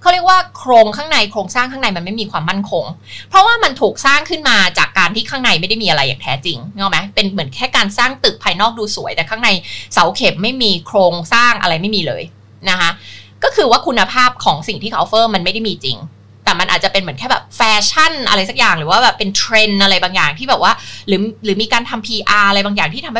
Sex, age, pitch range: female, 20-39, 170-240 Hz